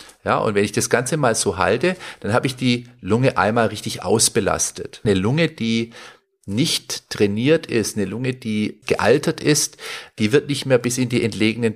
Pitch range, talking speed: 105-130 Hz, 185 wpm